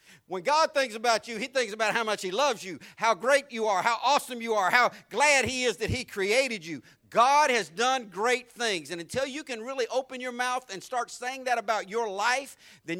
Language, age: English, 50-69